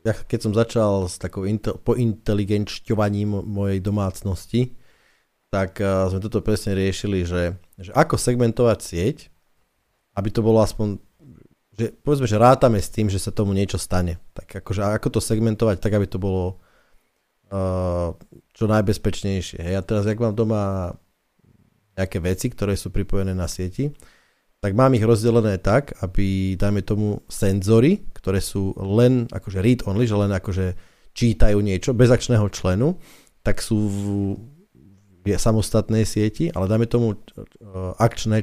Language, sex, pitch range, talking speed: Slovak, male, 95-115 Hz, 140 wpm